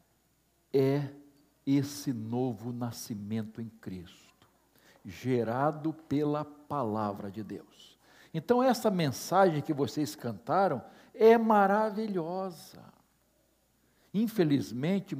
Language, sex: Portuguese, male